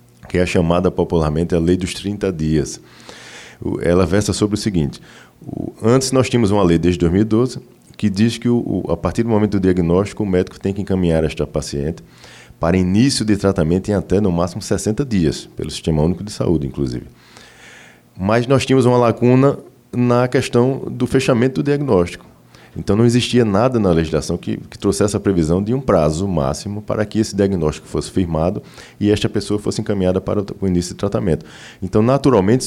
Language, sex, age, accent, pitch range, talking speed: Portuguese, male, 20-39, Brazilian, 85-115 Hz, 180 wpm